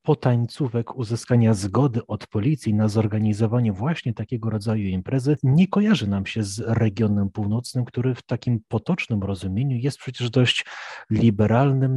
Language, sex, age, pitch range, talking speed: Polish, male, 30-49, 105-135 Hz, 140 wpm